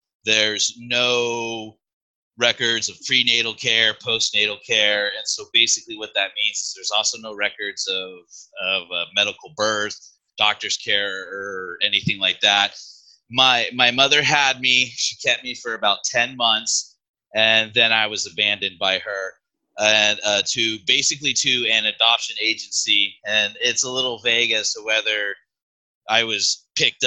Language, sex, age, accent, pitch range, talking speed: English, male, 30-49, American, 100-125 Hz, 150 wpm